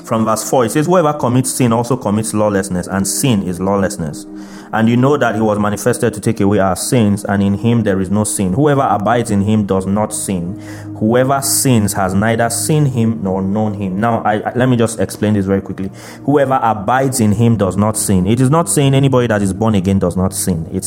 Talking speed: 225 wpm